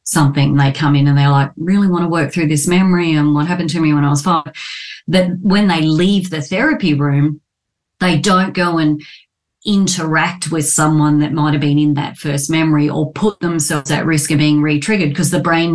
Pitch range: 145-175 Hz